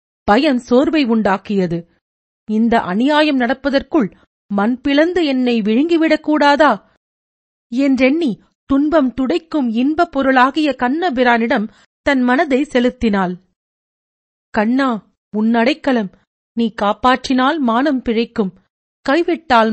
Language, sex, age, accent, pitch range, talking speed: Tamil, female, 40-59, native, 215-285 Hz, 80 wpm